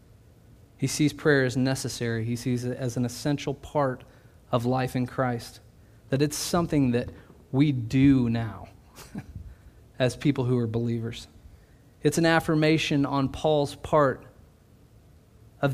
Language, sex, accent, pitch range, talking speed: English, male, American, 115-145 Hz, 135 wpm